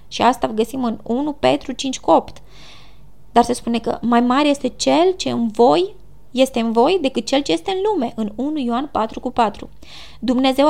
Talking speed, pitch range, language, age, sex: 195 wpm, 235-295 Hz, Romanian, 20-39, female